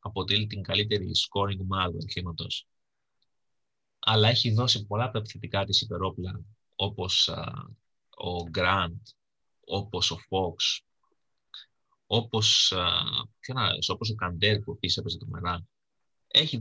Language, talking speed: Greek, 115 wpm